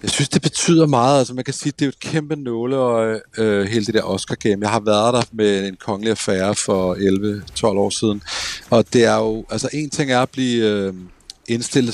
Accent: native